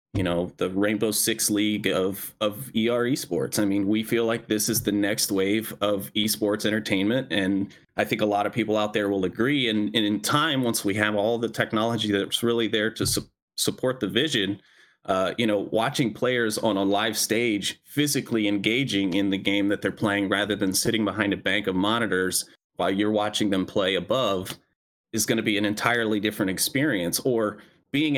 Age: 30-49